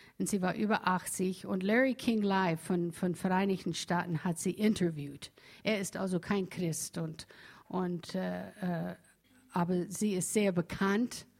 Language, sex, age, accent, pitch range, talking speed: German, female, 60-79, German, 175-225 Hz, 155 wpm